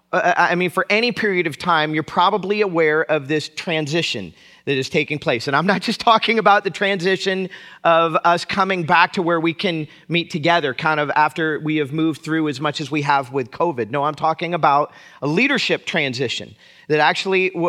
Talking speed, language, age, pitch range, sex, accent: 195 wpm, English, 40-59, 160-200 Hz, male, American